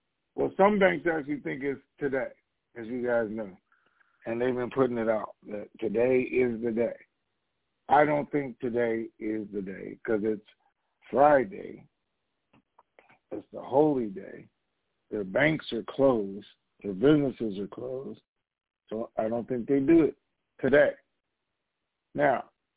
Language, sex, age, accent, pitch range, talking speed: English, male, 60-79, American, 110-150 Hz, 140 wpm